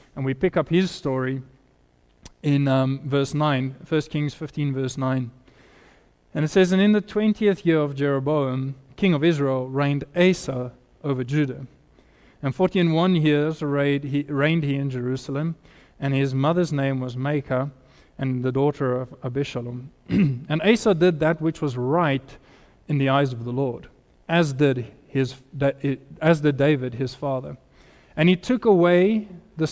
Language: English